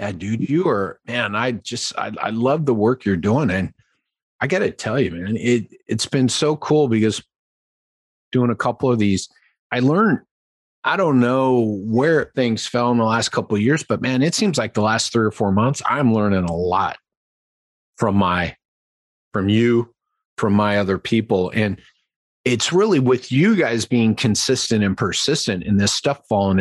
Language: English